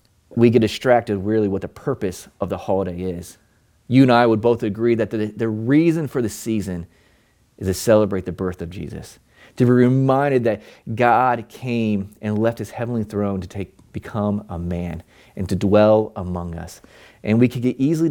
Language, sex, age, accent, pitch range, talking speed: English, male, 30-49, American, 100-120 Hz, 190 wpm